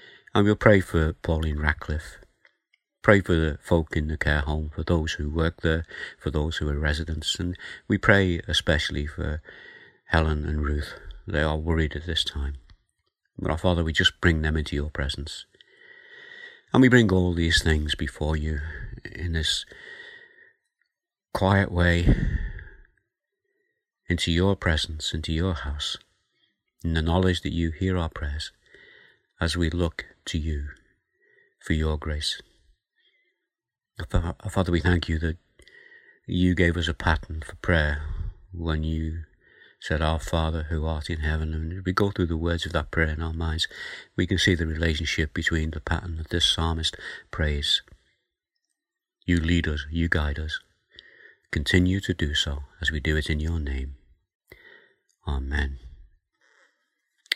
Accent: British